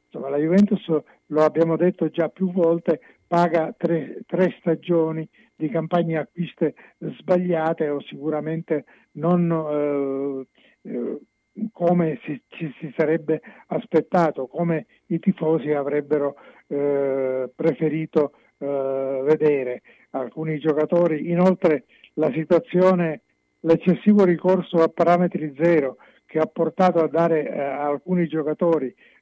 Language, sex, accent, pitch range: Italian, male, native, 150-170 Hz